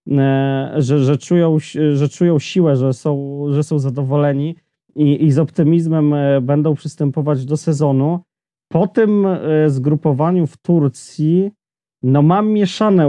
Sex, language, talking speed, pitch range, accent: male, Polish, 105 wpm, 140-170 Hz, native